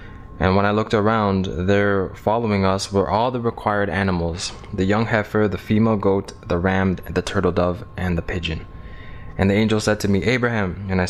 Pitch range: 90-105 Hz